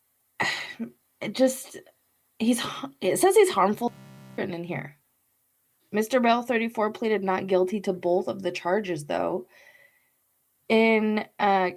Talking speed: 115 wpm